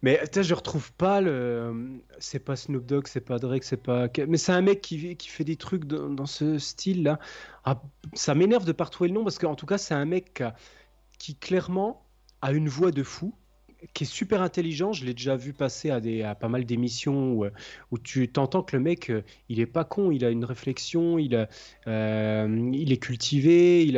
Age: 30-49